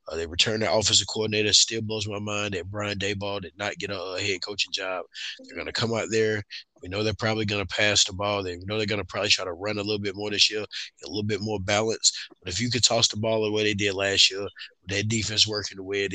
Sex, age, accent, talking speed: male, 20-39, American, 270 wpm